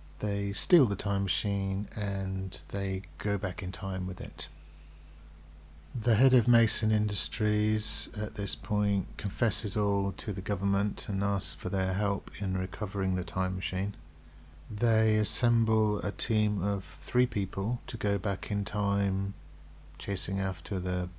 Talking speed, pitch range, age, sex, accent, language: 145 wpm, 95-105 Hz, 40-59, male, British, English